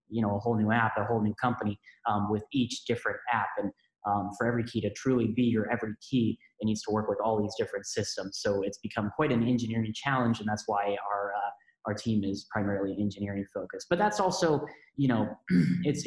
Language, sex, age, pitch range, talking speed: English, male, 20-39, 105-120 Hz, 220 wpm